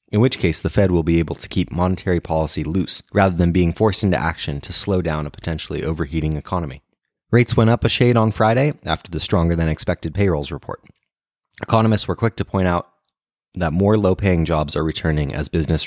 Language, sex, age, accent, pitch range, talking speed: English, male, 30-49, American, 80-105 Hz, 195 wpm